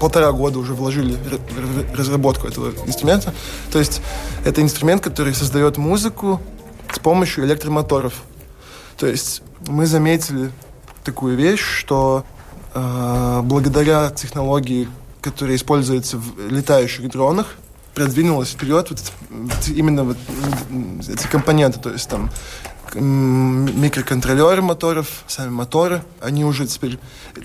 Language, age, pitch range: Russian, 20-39, 130-155 Hz